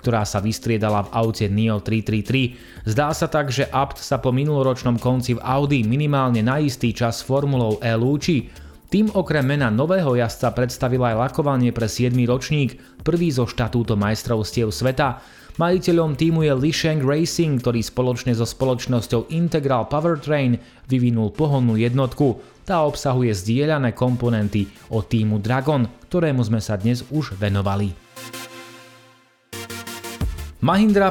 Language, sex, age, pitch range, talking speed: Slovak, male, 30-49, 115-140 Hz, 135 wpm